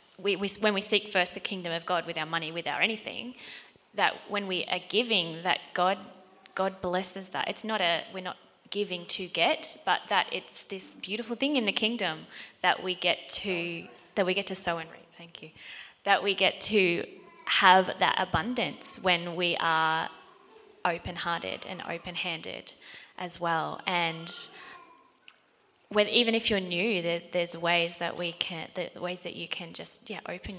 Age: 20-39